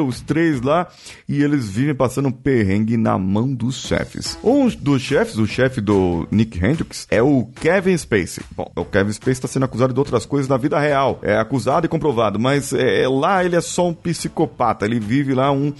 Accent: Brazilian